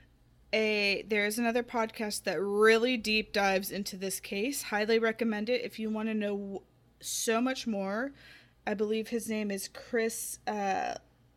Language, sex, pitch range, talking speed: English, female, 200-230 Hz, 155 wpm